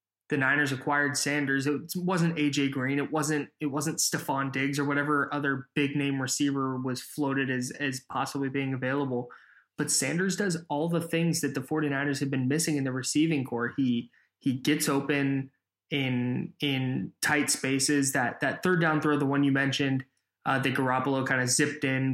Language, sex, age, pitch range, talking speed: English, male, 20-39, 135-155 Hz, 180 wpm